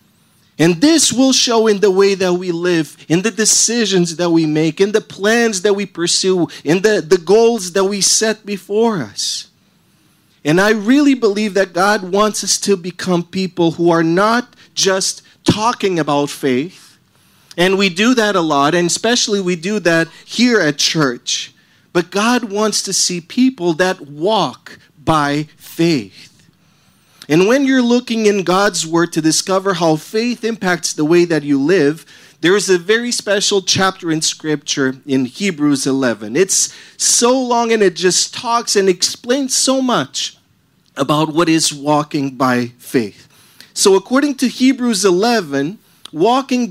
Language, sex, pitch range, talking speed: English, male, 160-215 Hz, 160 wpm